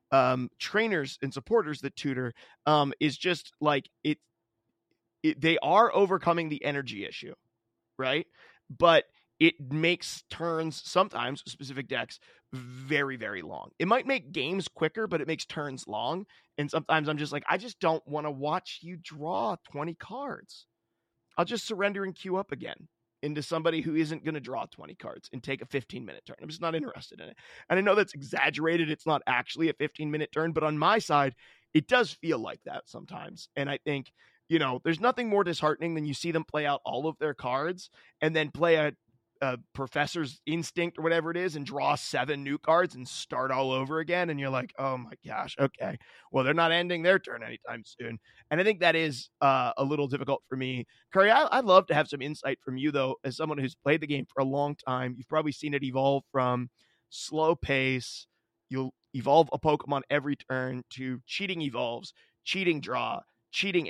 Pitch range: 135-165 Hz